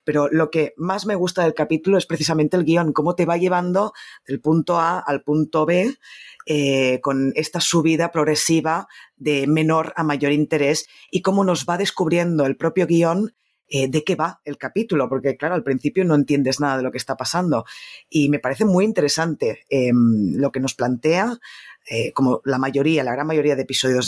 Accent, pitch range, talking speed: Spanish, 145-175 Hz, 190 wpm